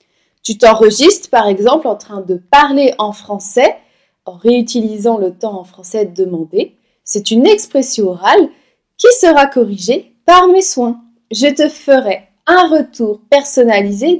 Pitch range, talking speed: 225-315 Hz, 140 wpm